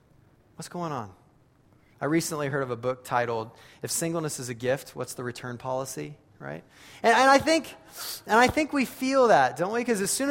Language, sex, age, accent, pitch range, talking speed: English, male, 30-49, American, 125-175 Hz, 205 wpm